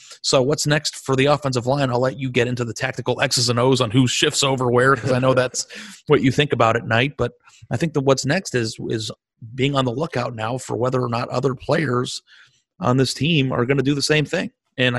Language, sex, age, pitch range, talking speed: English, male, 30-49, 120-140 Hz, 250 wpm